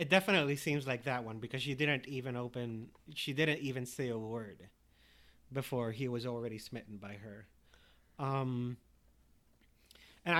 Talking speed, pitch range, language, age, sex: 150 wpm, 120-145 Hz, English, 30-49, male